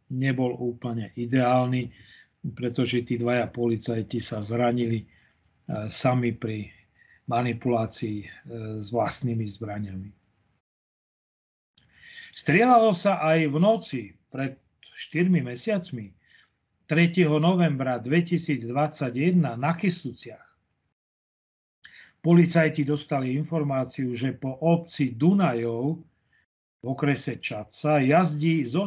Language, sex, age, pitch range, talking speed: Slovak, male, 40-59, 120-170 Hz, 85 wpm